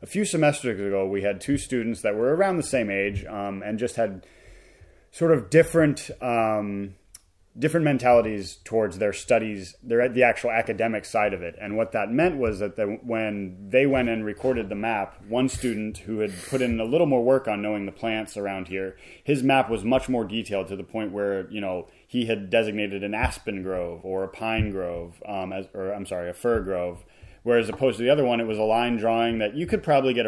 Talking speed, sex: 220 wpm, male